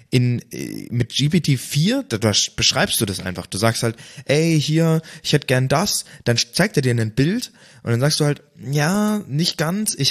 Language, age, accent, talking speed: German, 20-39, German, 190 wpm